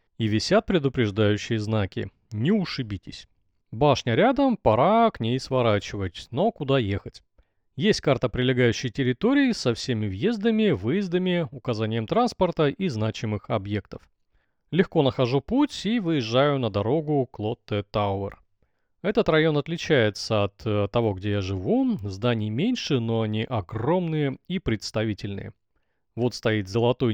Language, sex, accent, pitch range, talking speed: Russian, male, native, 105-160 Hz, 120 wpm